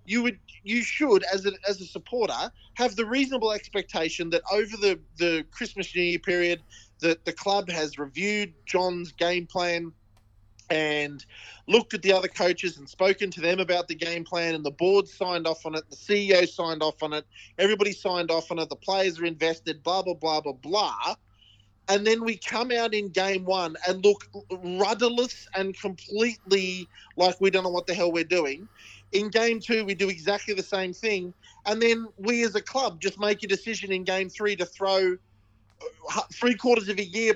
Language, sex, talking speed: English, male, 195 wpm